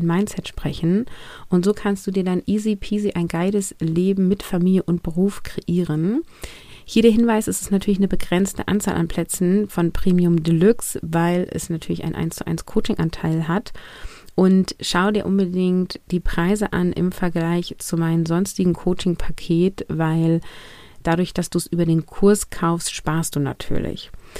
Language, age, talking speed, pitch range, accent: German, 30-49, 165 wpm, 160-190 Hz, German